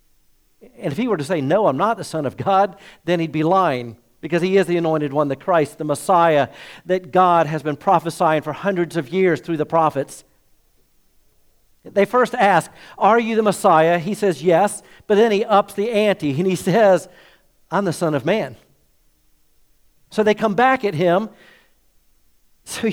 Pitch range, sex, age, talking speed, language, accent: 130-180 Hz, male, 50-69, 185 wpm, English, American